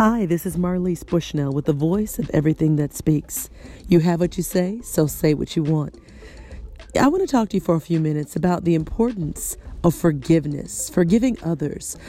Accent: American